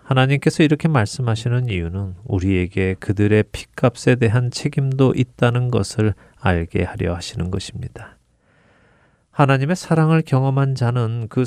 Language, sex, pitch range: Korean, male, 100-125 Hz